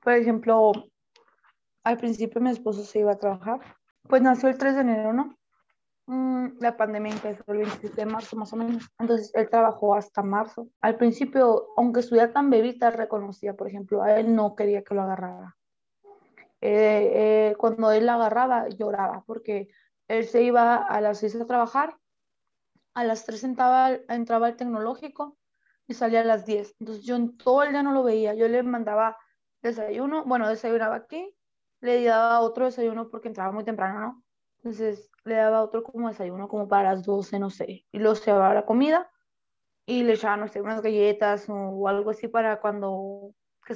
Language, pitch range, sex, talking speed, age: Spanish, 210-240 Hz, female, 180 wpm, 20-39